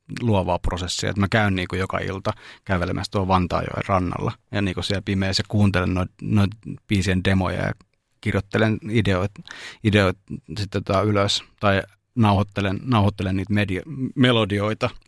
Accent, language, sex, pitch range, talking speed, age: native, Finnish, male, 95-110 Hz, 145 wpm, 30-49